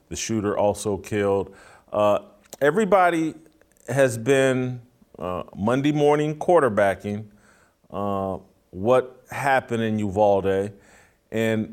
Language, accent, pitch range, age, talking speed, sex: English, American, 105-125 Hz, 40-59, 90 wpm, male